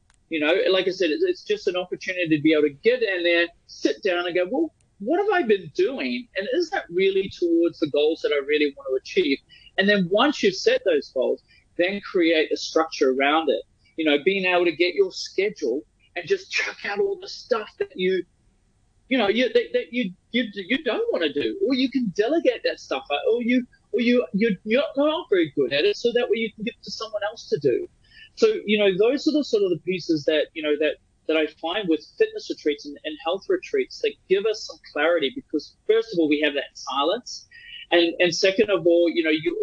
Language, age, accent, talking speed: English, 30-49, Australian, 235 wpm